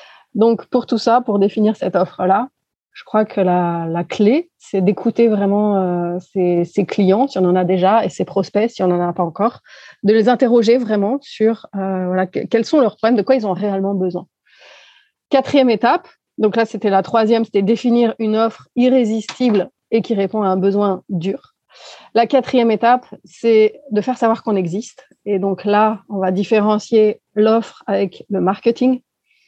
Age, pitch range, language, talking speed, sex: 30-49, 190-235 Hz, French, 185 wpm, female